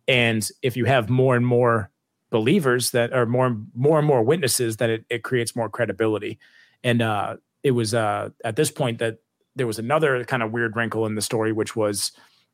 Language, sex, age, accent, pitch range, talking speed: English, male, 30-49, American, 110-125 Hz, 205 wpm